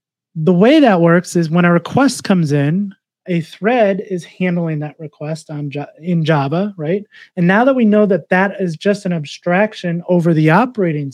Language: English